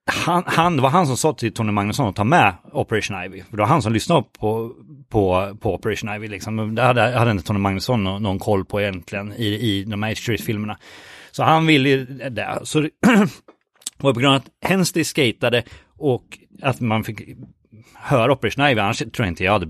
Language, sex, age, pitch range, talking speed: Swedish, male, 30-49, 105-145 Hz, 210 wpm